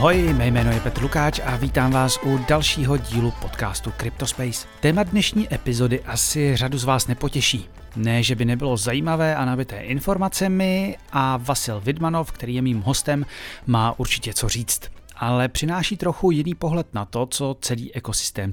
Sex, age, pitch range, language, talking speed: male, 40-59, 115-150 Hz, Czech, 165 wpm